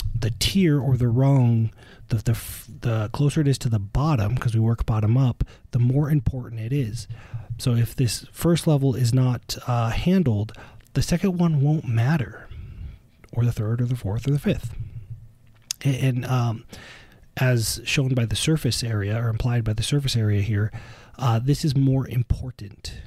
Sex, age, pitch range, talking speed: male, 30-49, 110-130 Hz, 175 wpm